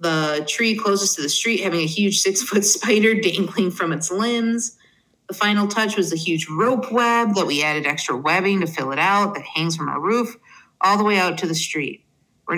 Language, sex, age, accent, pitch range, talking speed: English, female, 30-49, American, 170-235 Hz, 215 wpm